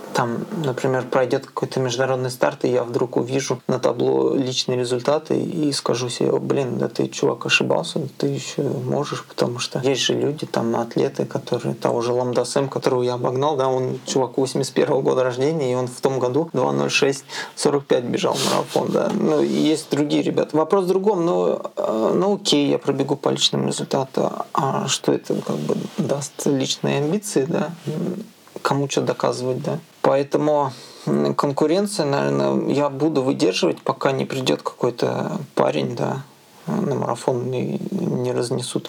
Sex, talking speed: male, 155 wpm